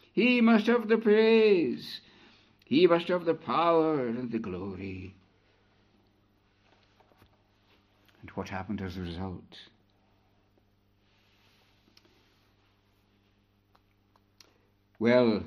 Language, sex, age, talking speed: English, male, 60-79, 80 wpm